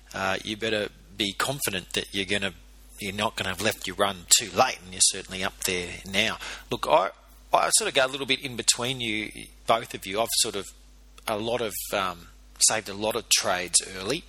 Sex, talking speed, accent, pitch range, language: male, 215 wpm, Australian, 90-115 Hz, English